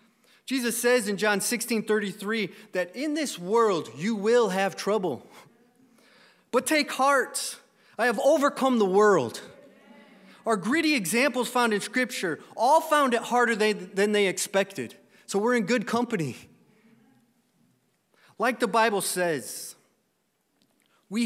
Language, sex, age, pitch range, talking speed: English, male, 30-49, 205-260 Hz, 125 wpm